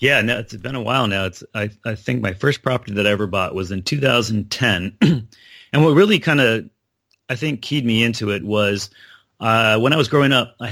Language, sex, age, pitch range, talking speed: English, male, 30-49, 100-125 Hz, 225 wpm